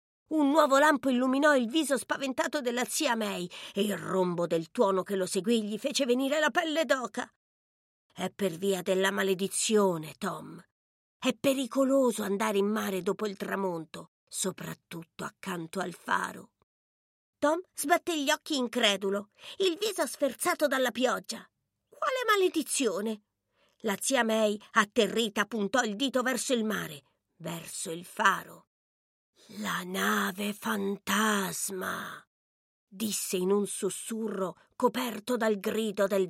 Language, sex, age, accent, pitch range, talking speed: Italian, female, 50-69, native, 195-280 Hz, 130 wpm